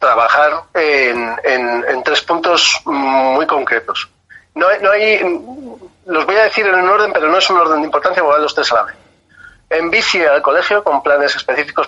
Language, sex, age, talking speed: Spanish, male, 40-59, 190 wpm